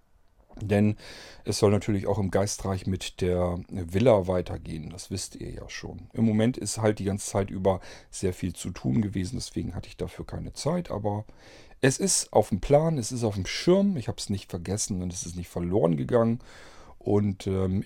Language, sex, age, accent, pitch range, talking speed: German, male, 40-59, German, 90-110 Hz, 200 wpm